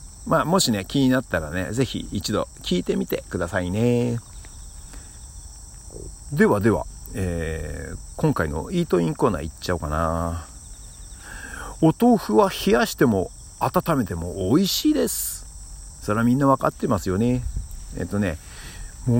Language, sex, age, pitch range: Japanese, male, 50-69, 85-125 Hz